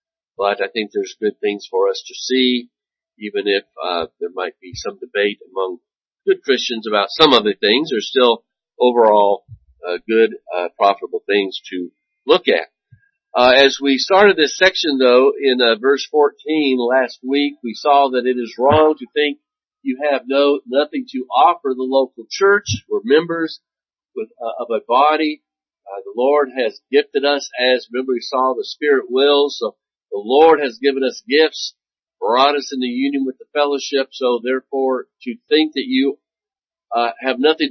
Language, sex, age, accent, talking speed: English, male, 50-69, American, 175 wpm